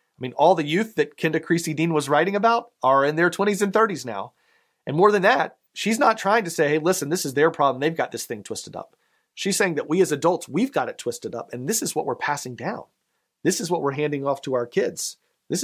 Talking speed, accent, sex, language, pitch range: 255 wpm, American, male, English, 125-165 Hz